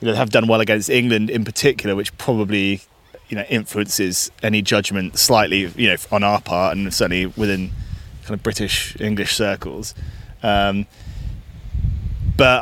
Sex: male